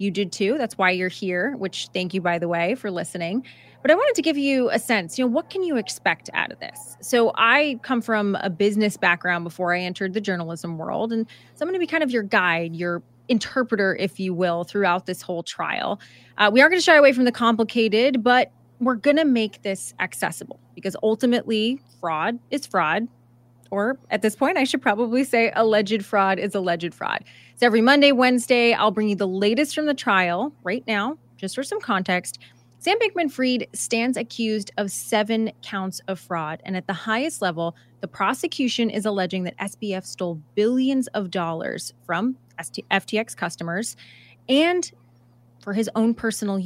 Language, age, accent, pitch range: English, 20-39, American, 180-240 Hz